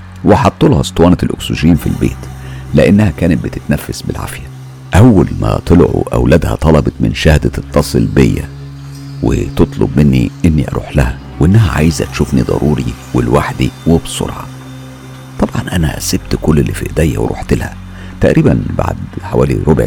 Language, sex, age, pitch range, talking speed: Arabic, male, 50-69, 65-95 Hz, 130 wpm